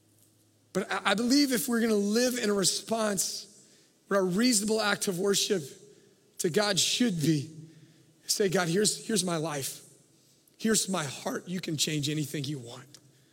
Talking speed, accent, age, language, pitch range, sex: 160 wpm, American, 30-49, English, 150-200 Hz, male